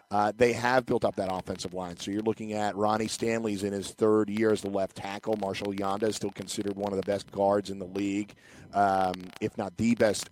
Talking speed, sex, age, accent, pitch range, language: 235 wpm, male, 40-59, American, 100-110 Hz, English